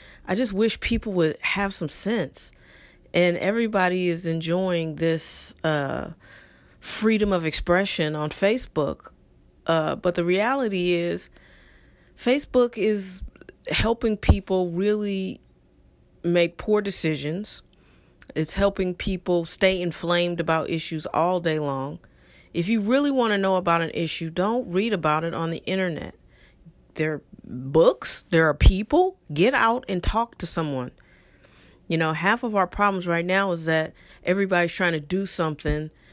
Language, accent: English, American